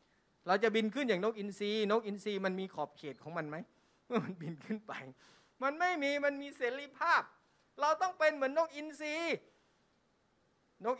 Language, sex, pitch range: Thai, male, 175-245 Hz